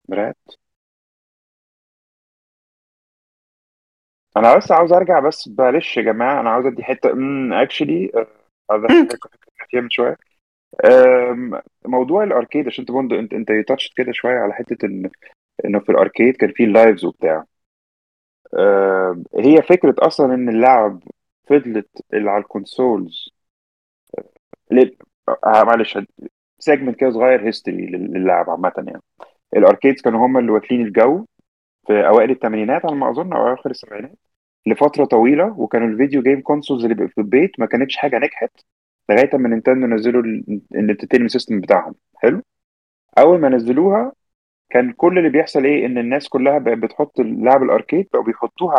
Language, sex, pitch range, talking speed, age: Arabic, male, 110-135 Hz, 140 wpm, 30-49